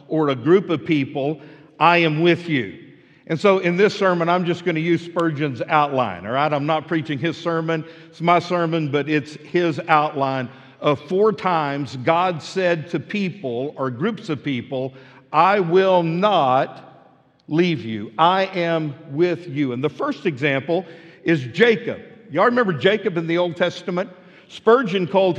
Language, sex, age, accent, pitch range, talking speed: English, male, 50-69, American, 150-195 Hz, 165 wpm